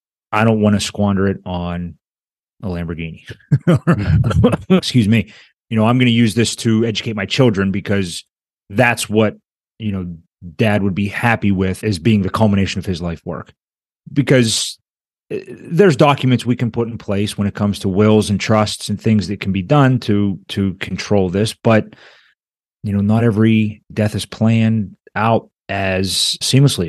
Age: 30-49